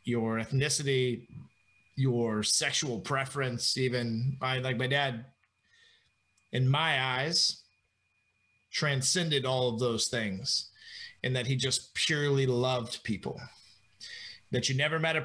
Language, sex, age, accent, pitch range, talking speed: English, male, 30-49, American, 125-160 Hz, 120 wpm